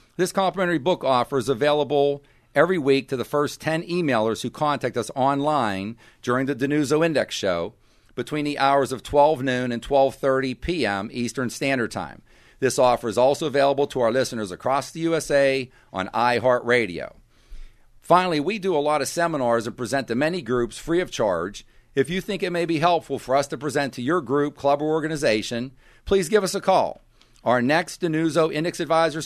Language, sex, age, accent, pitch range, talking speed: English, male, 50-69, American, 125-155 Hz, 185 wpm